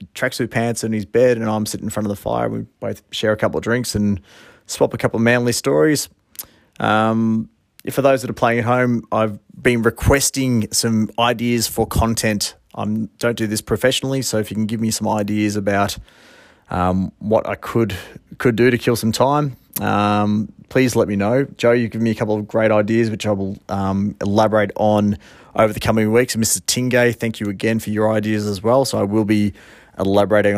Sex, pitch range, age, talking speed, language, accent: male, 100-115 Hz, 30-49, 210 wpm, English, Australian